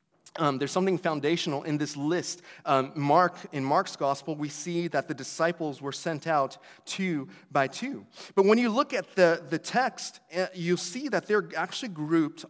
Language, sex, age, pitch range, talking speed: English, male, 30-49, 145-195 Hz, 180 wpm